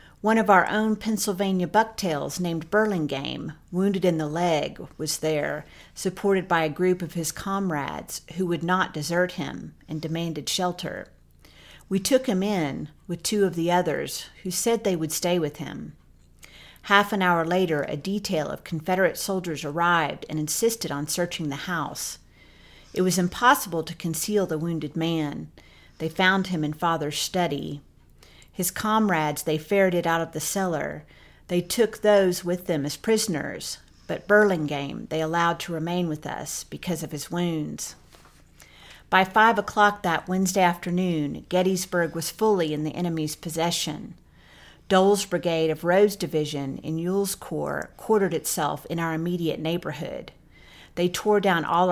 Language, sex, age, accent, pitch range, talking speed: English, female, 50-69, American, 155-185 Hz, 155 wpm